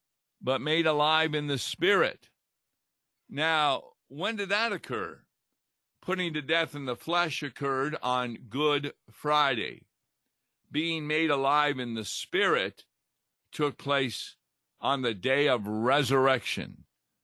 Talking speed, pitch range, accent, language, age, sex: 120 wpm, 120-155 Hz, American, English, 50-69, male